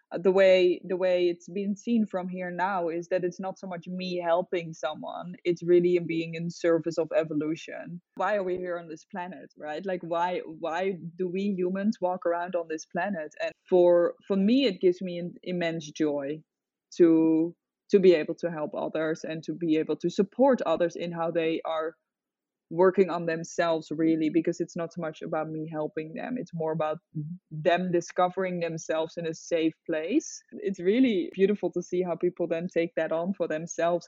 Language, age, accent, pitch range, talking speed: English, 20-39, Dutch, 165-195 Hz, 190 wpm